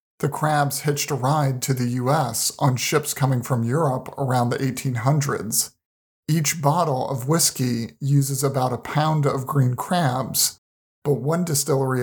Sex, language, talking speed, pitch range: male, English, 150 wpm, 125-150 Hz